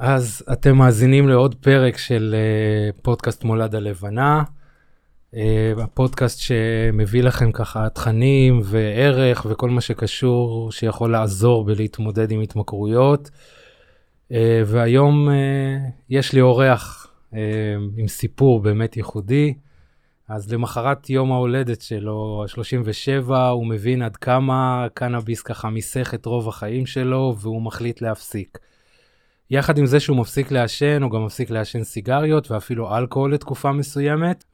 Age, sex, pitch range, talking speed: 20-39, male, 110-130 Hz, 115 wpm